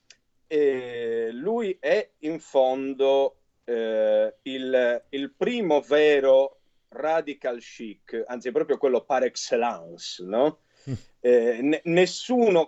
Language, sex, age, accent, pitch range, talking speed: Italian, male, 40-59, native, 130-180 Hz, 105 wpm